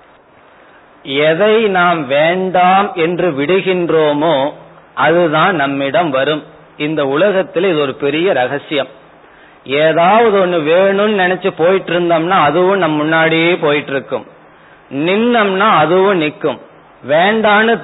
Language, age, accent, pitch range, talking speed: Tamil, 40-59, native, 145-190 Hz, 95 wpm